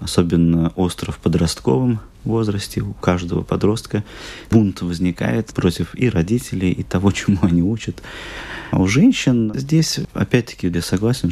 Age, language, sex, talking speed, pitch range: 20-39, Russian, male, 135 wpm, 85-105 Hz